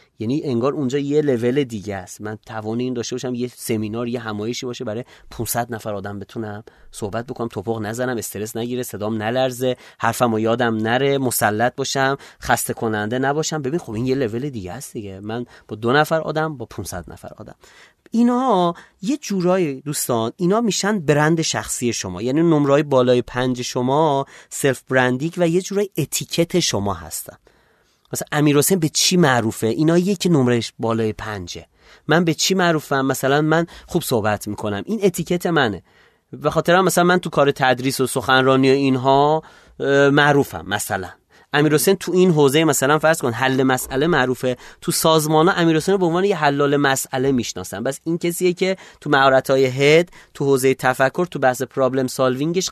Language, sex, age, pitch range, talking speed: Persian, male, 30-49, 120-160 Hz, 170 wpm